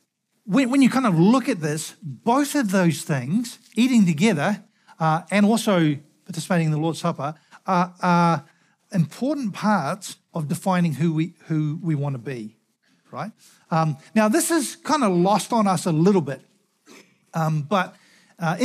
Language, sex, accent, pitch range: English, male, Australian, 165-215 Hz